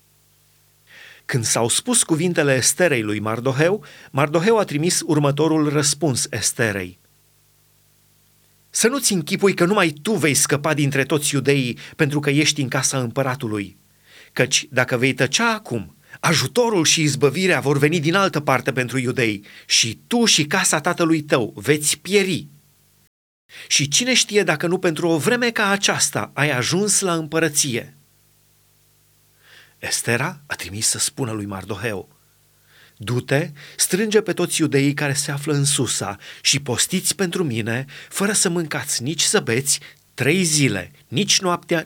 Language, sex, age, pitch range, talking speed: Romanian, male, 30-49, 130-170 Hz, 140 wpm